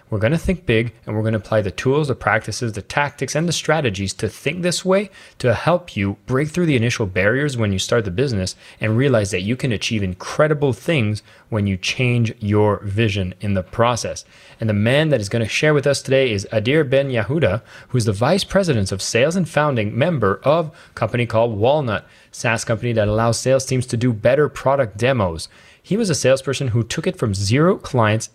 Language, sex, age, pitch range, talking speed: English, male, 30-49, 105-140 Hz, 220 wpm